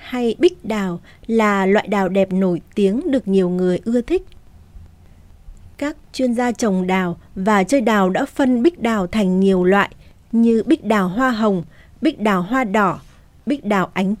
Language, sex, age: Vietnamese, female, 20-39